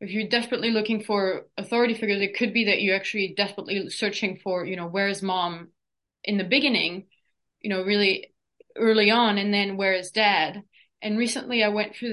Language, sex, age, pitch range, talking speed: English, female, 20-39, 205-240 Hz, 195 wpm